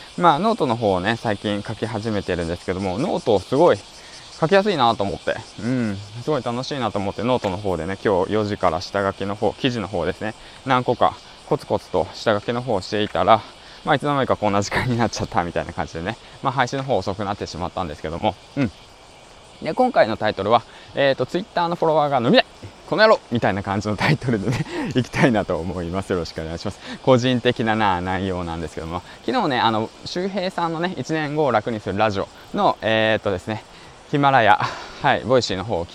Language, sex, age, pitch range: Japanese, male, 20-39, 95-130 Hz